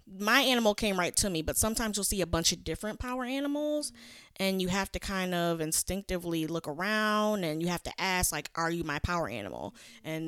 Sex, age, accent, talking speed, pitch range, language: female, 20-39, American, 215 wpm, 165-205 Hz, English